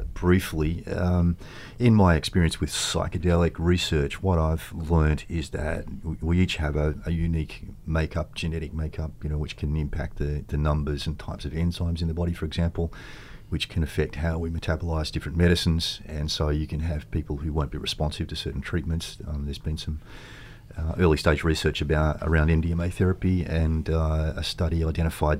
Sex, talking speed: male, 180 wpm